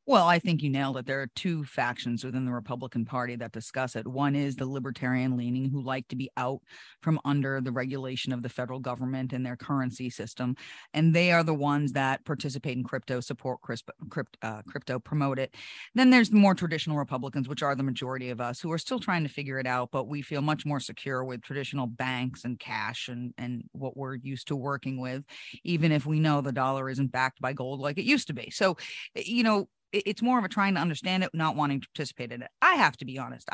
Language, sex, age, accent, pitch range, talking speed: English, female, 40-59, American, 130-175 Hz, 230 wpm